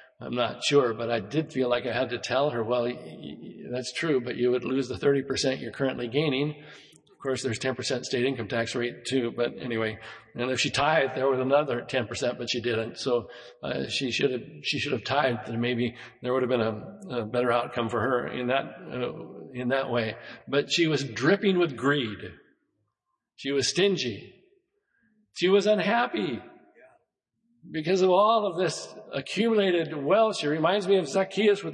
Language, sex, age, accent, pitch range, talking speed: English, male, 50-69, American, 120-180 Hz, 185 wpm